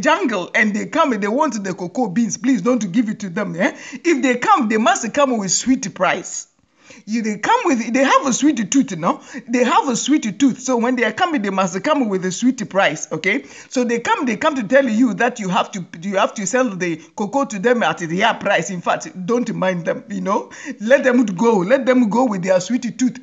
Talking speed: 240 wpm